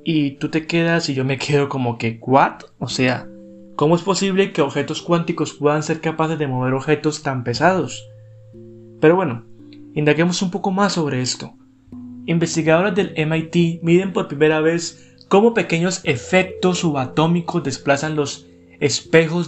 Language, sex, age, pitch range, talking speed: Spanish, male, 20-39, 130-170 Hz, 150 wpm